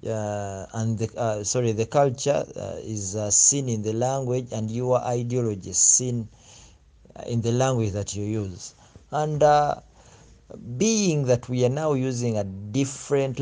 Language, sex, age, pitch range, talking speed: English, male, 50-69, 110-140 Hz, 155 wpm